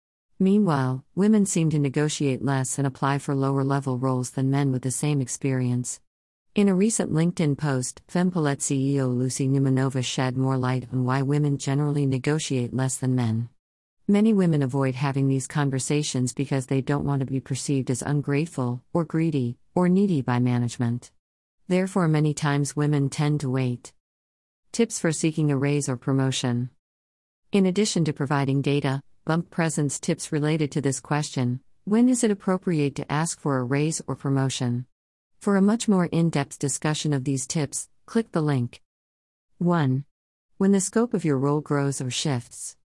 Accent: American